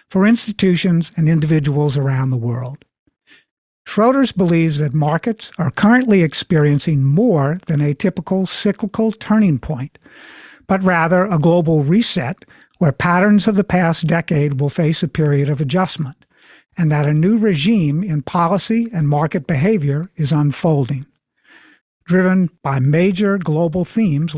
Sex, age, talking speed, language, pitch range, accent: male, 50-69, 135 wpm, English, 150-190 Hz, American